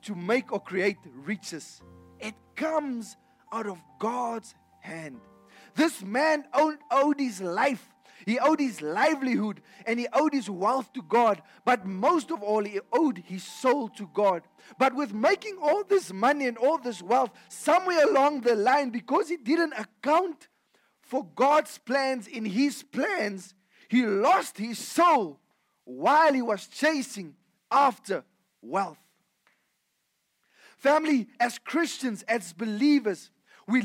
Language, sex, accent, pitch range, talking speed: English, male, South African, 220-300 Hz, 135 wpm